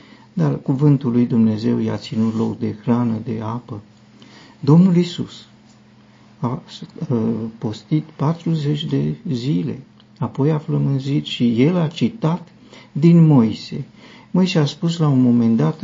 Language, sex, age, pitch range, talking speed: Romanian, male, 50-69, 115-155 Hz, 130 wpm